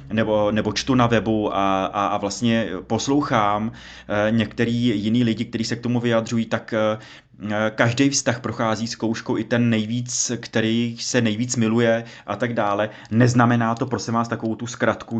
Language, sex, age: Czech, male, 20-39